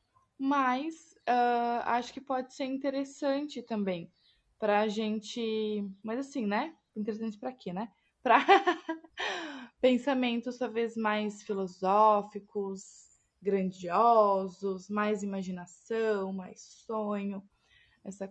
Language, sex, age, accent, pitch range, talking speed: Portuguese, female, 20-39, Brazilian, 200-250 Hz, 95 wpm